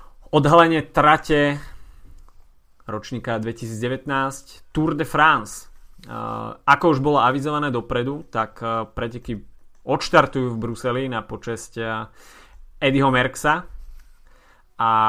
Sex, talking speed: male, 90 wpm